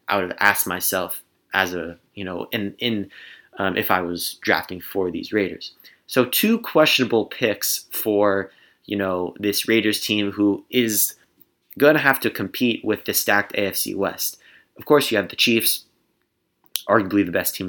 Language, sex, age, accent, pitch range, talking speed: English, male, 20-39, American, 95-125 Hz, 175 wpm